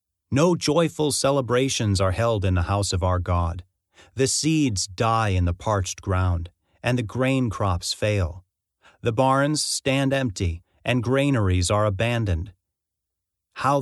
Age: 40-59